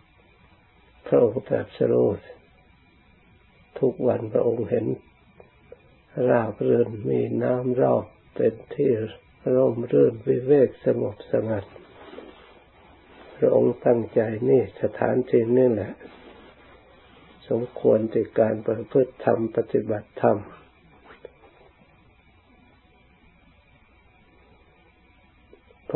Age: 60-79